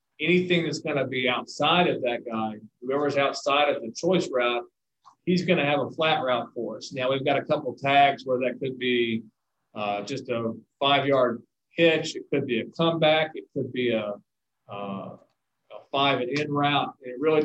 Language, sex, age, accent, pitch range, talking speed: English, male, 40-59, American, 120-145 Hz, 180 wpm